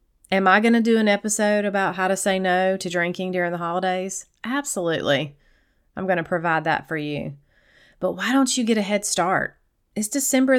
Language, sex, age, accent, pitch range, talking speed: English, female, 30-49, American, 170-220 Hz, 200 wpm